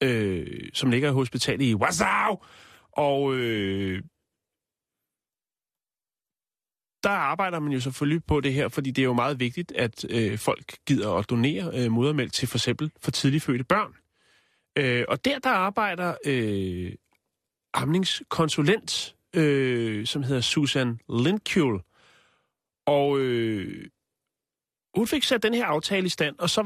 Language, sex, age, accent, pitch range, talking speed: Danish, male, 30-49, native, 125-175 Hz, 135 wpm